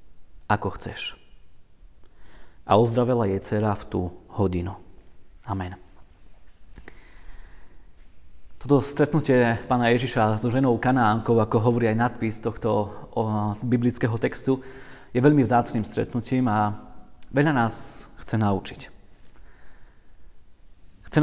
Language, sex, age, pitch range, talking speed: Slovak, male, 30-49, 100-125 Hz, 95 wpm